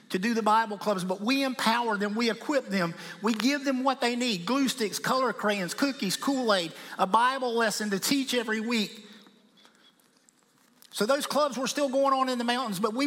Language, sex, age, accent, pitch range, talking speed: English, male, 50-69, American, 210-270 Hz, 195 wpm